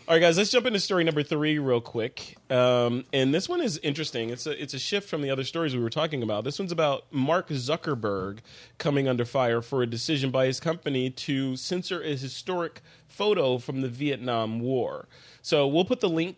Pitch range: 120-150 Hz